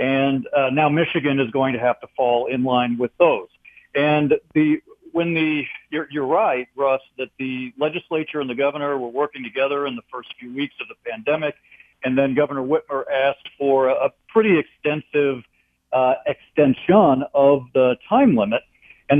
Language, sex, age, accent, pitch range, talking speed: English, male, 50-69, American, 130-160 Hz, 170 wpm